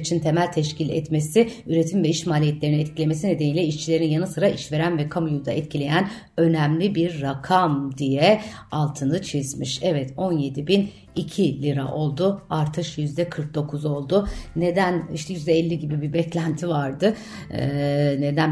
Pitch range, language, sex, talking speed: 150-180 Hz, Turkish, female, 135 wpm